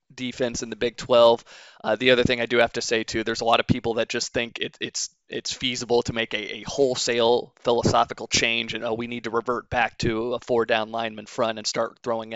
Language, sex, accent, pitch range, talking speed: English, male, American, 115-125 Hz, 245 wpm